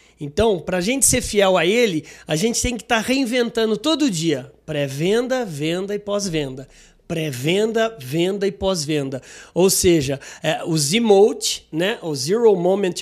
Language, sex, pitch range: Portuguese, male, 170-245 Hz